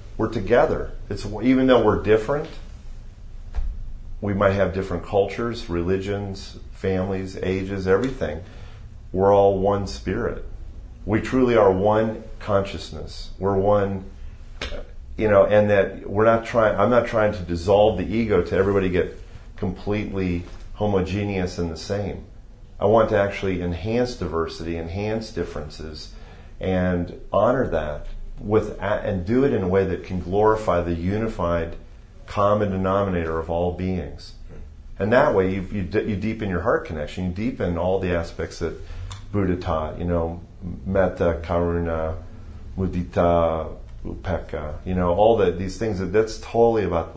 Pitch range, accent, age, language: 85-105 Hz, American, 40-59, English